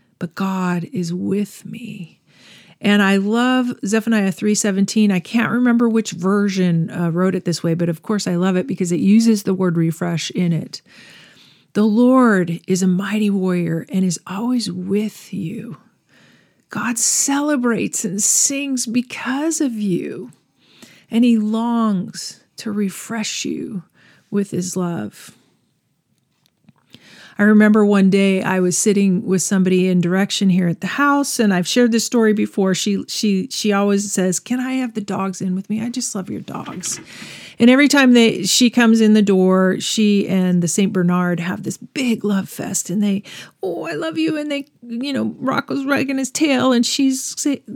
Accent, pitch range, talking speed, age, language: American, 190-245 Hz, 170 wpm, 40-59, English